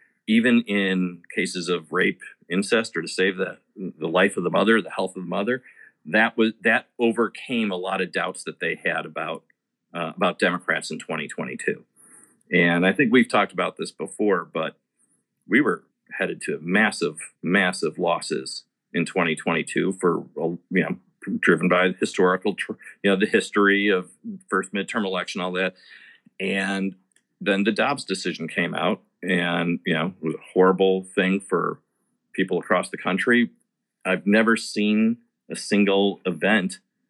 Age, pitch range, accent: 40-59, 90-115 Hz, American